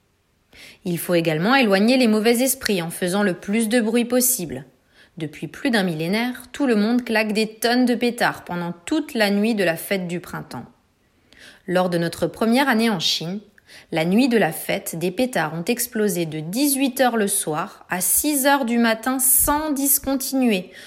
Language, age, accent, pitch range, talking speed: French, 30-49, French, 175-230 Hz, 180 wpm